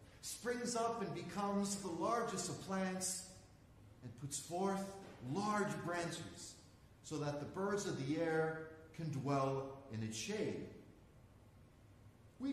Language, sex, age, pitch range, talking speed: English, male, 40-59, 125-210 Hz, 125 wpm